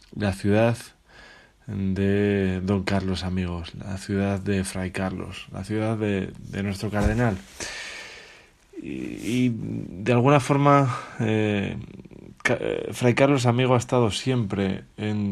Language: Spanish